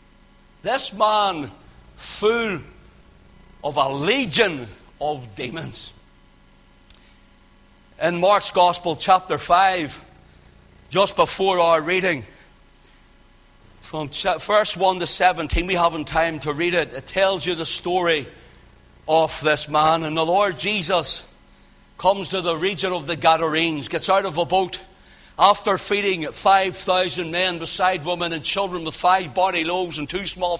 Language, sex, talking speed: English, male, 130 wpm